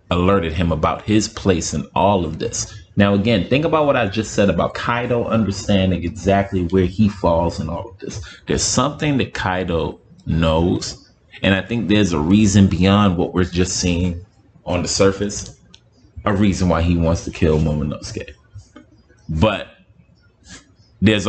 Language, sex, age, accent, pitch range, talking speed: English, male, 30-49, American, 85-105 Hz, 160 wpm